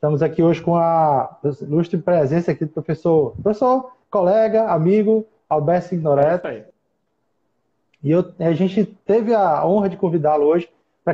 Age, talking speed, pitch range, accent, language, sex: 20-39, 140 wpm, 150-185 Hz, Brazilian, Portuguese, male